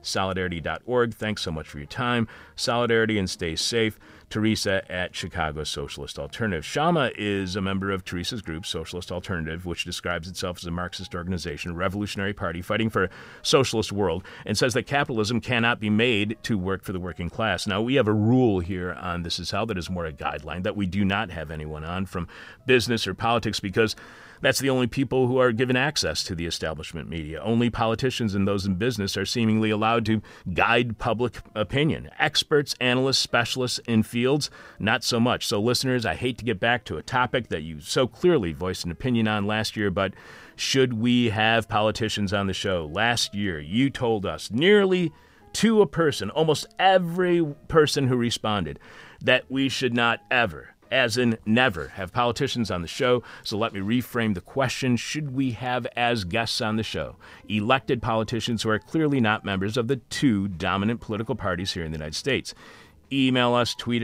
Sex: male